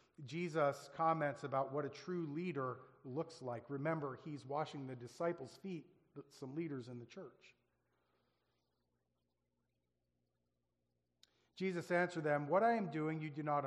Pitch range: 130-165 Hz